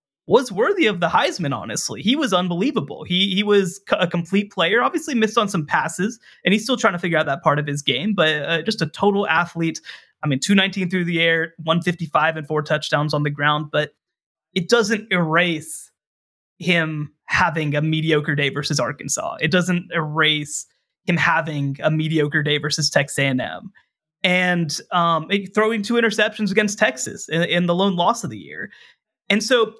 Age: 20-39